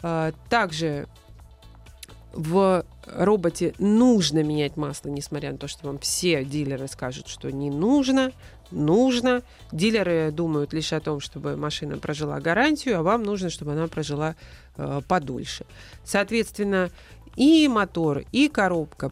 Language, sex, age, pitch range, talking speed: Russian, female, 30-49, 150-210 Hz, 125 wpm